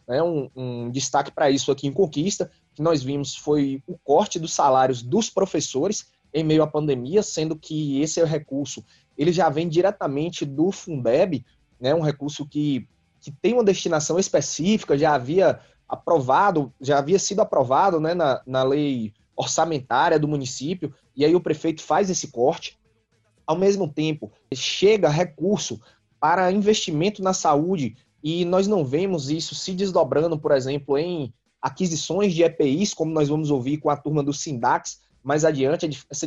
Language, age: Portuguese, 20-39